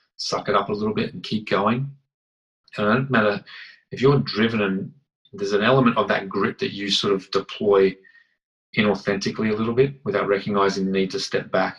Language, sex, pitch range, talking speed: English, male, 95-105 Hz, 200 wpm